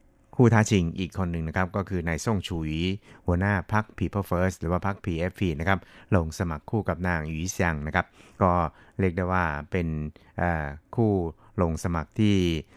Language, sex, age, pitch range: Thai, male, 60-79, 85-100 Hz